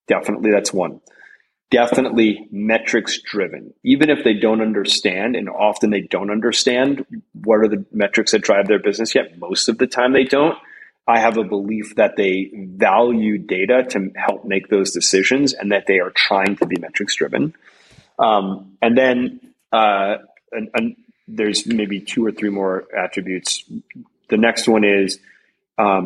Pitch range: 100-115 Hz